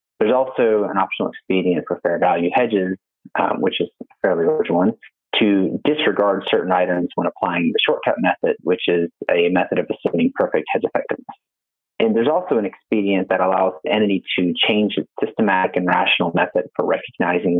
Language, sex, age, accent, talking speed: English, male, 30-49, American, 175 wpm